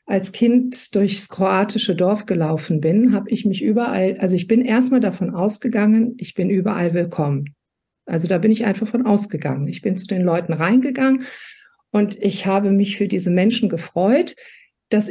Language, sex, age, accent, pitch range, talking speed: German, female, 50-69, German, 180-230 Hz, 170 wpm